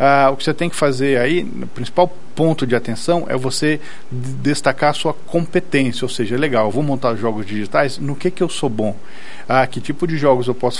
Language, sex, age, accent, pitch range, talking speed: Portuguese, male, 40-59, Brazilian, 130-175 Hz, 230 wpm